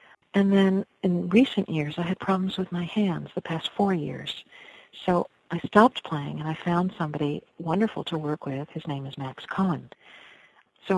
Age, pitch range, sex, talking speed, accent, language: 50-69, 160-185 Hz, female, 180 wpm, American, English